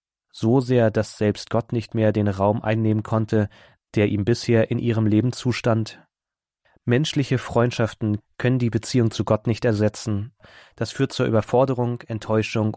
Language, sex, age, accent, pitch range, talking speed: German, male, 30-49, German, 110-120 Hz, 150 wpm